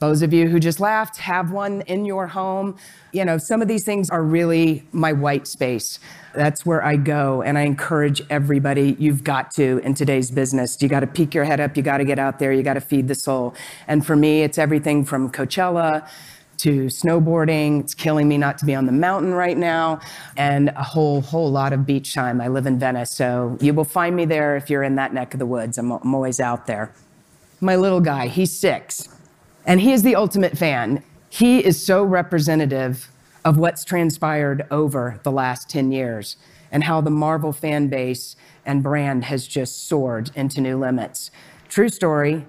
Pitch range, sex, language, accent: 140-170 Hz, female, English, American